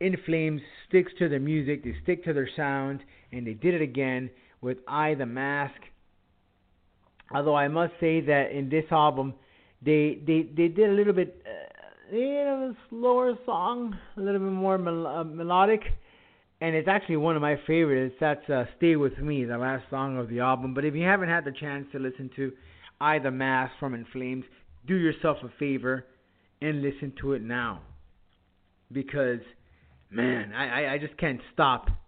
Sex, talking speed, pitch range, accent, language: male, 175 wpm, 130-165 Hz, American, English